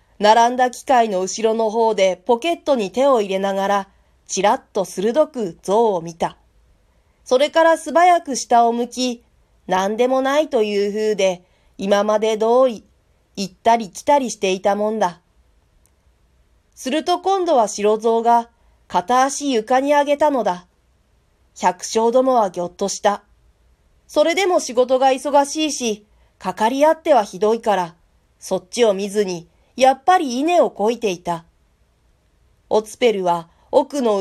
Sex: female